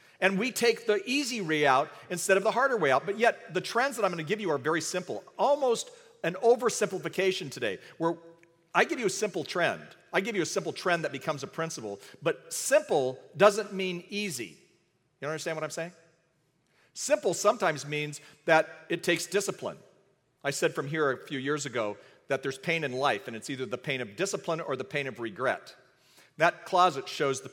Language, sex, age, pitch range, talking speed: English, male, 50-69, 140-195 Hz, 205 wpm